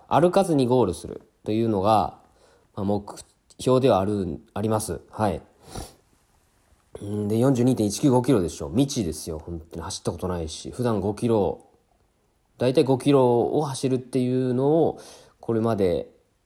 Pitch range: 95-130 Hz